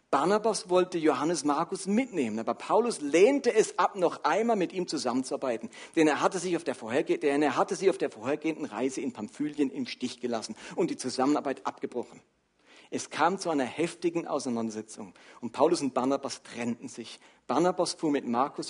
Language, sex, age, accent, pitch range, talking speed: German, male, 50-69, German, 135-185 Hz, 175 wpm